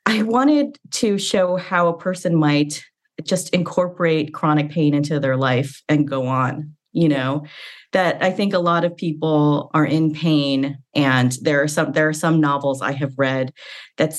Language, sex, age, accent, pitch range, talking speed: English, female, 30-49, American, 135-165 Hz, 180 wpm